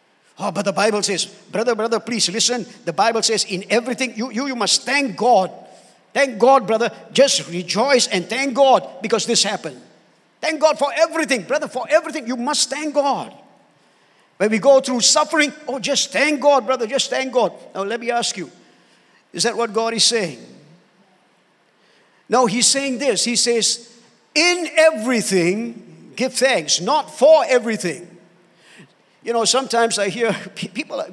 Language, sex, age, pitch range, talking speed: English, male, 50-69, 200-260 Hz, 165 wpm